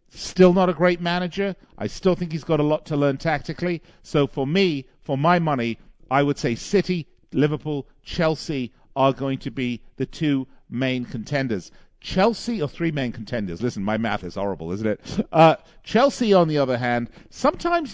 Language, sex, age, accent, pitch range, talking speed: English, male, 50-69, British, 120-165 Hz, 180 wpm